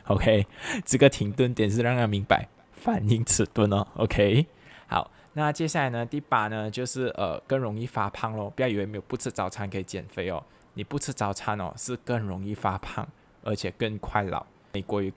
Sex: male